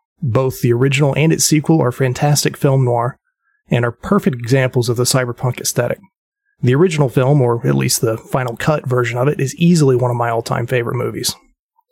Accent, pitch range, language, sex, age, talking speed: American, 125-155 Hz, English, male, 30-49, 190 wpm